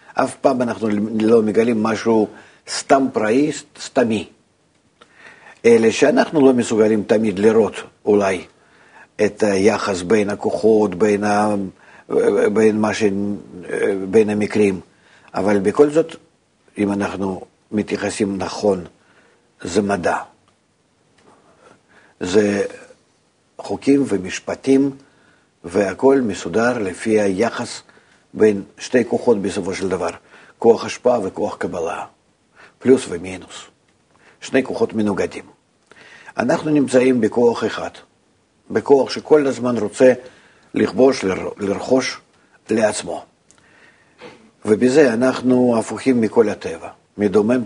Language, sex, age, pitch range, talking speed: Hebrew, male, 50-69, 105-130 Hz, 95 wpm